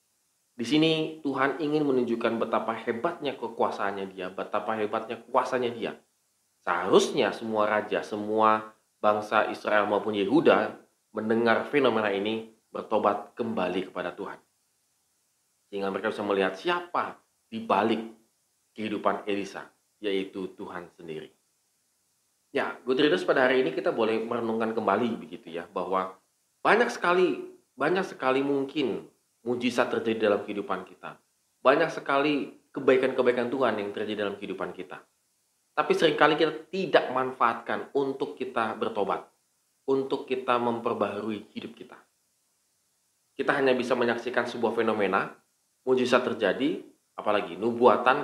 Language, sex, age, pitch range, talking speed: Indonesian, male, 30-49, 105-135 Hz, 115 wpm